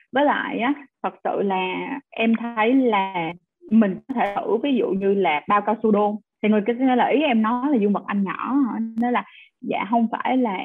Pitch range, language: 205-250 Hz, Vietnamese